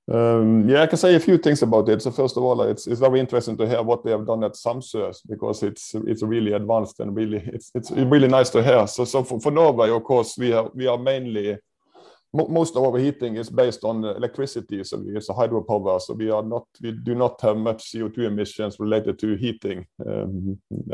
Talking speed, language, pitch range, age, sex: 225 wpm, English, 105-120 Hz, 20-39, male